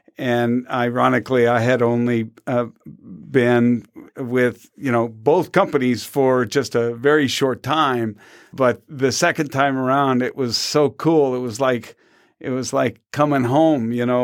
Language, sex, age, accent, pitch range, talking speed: English, male, 50-69, American, 125-155 Hz, 155 wpm